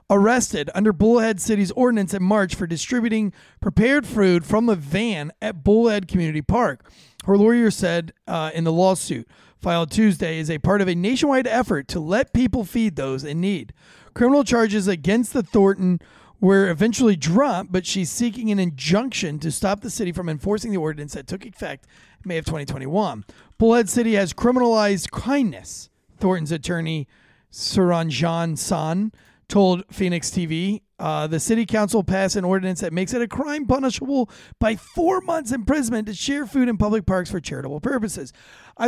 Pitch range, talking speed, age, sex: 165-220 Hz, 165 wpm, 30-49, male